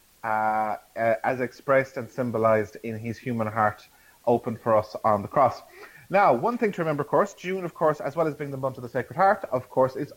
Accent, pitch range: Irish, 120-145 Hz